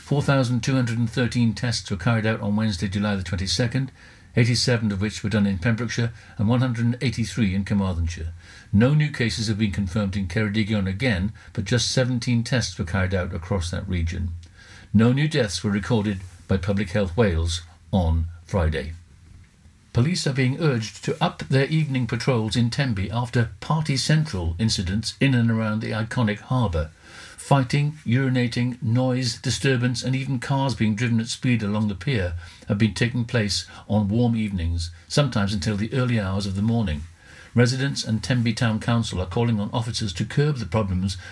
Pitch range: 100-125 Hz